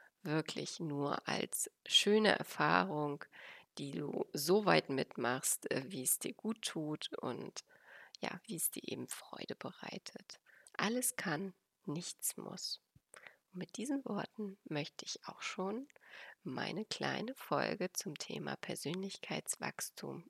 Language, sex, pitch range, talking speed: German, female, 175-235 Hz, 120 wpm